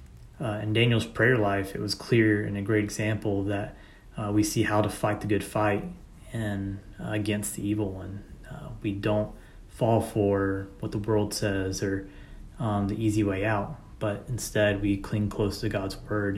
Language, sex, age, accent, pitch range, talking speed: English, male, 20-39, American, 100-110 Hz, 185 wpm